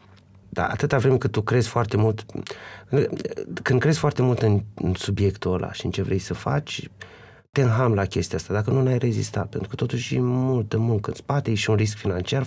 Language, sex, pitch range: Romanian, male, 95-115 Hz